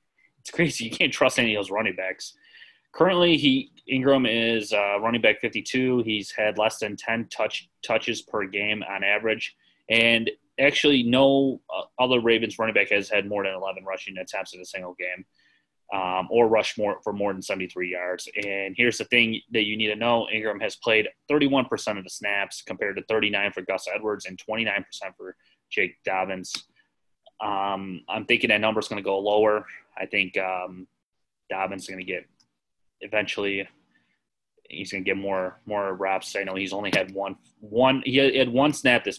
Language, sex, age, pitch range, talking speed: English, male, 20-39, 95-120 Hz, 190 wpm